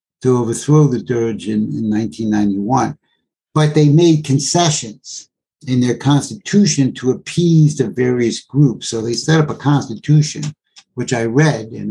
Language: English